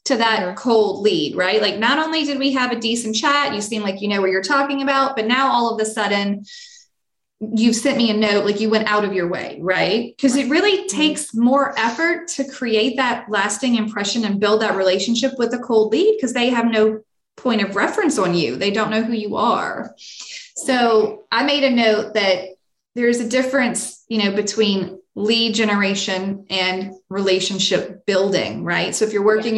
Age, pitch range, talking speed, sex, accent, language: 20-39, 205-260 Hz, 200 wpm, female, American, English